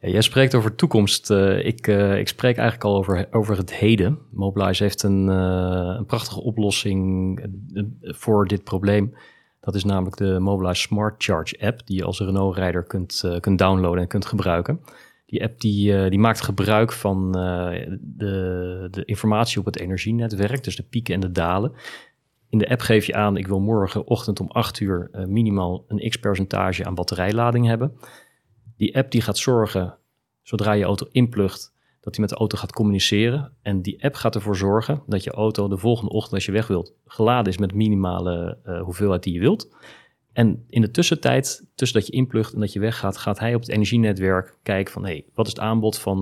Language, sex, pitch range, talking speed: Dutch, male, 95-110 Hz, 195 wpm